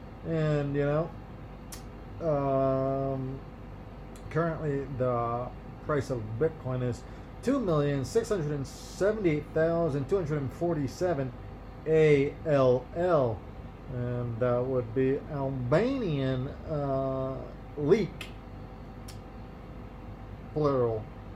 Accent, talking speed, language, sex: American, 55 wpm, English, male